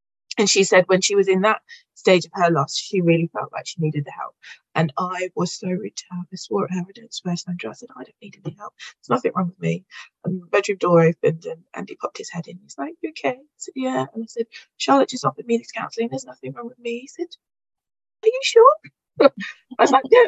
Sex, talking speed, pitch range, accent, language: female, 255 wpm, 170-230 Hz, British, English